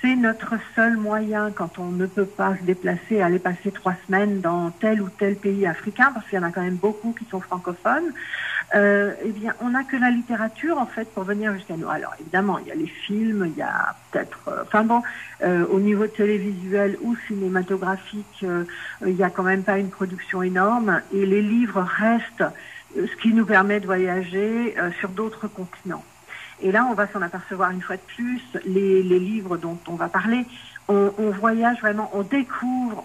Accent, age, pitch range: French, 60-79, 185-220 Hz